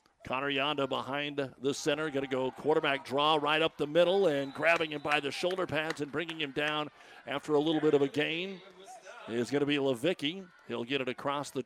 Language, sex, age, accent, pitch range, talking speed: English, male, 50-69, American, 125-150 Hz, 215 wpm